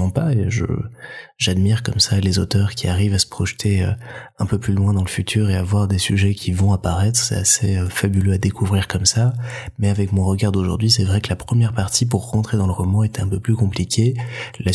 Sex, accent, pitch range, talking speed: male, French, 95-115 Hz, 230 wpm